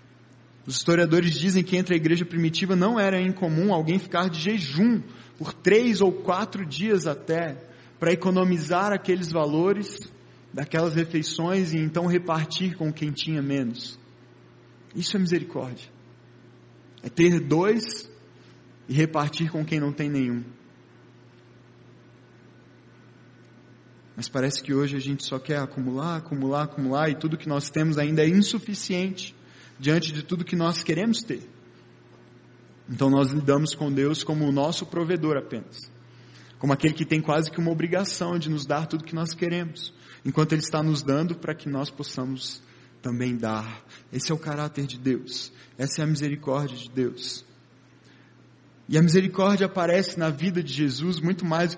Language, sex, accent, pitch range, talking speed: Portuguese, male, Brazilian, 135-175 Hz, 155 wpm